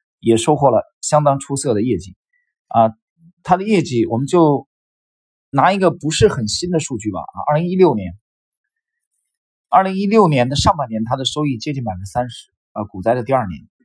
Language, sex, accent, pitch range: Chinese, male, native, 115-180 Hz